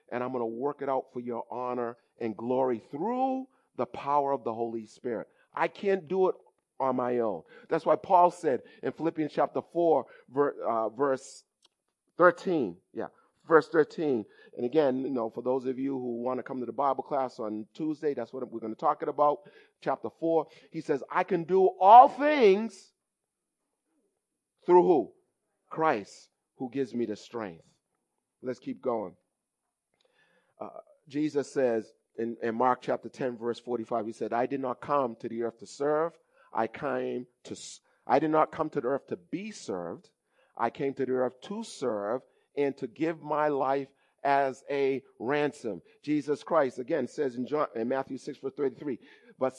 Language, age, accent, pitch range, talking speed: English, 40-59, American, 125-155 Hz, 175 wpm